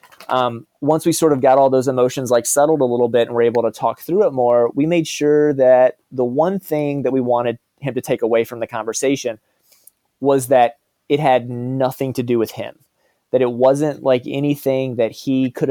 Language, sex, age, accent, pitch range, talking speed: English, male, 30-49, American, 120-145 Hz, 215 wpm